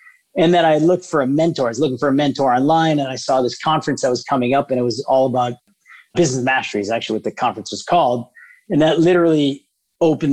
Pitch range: 130-160 Hz